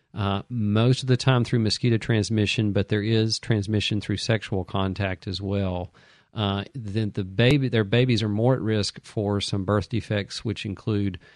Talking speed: 175 wpm